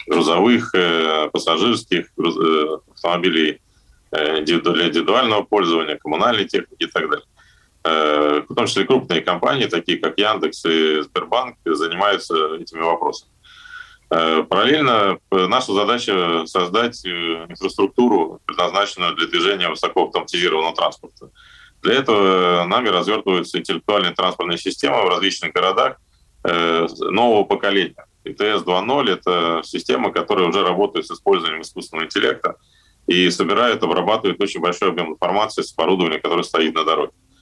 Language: Russian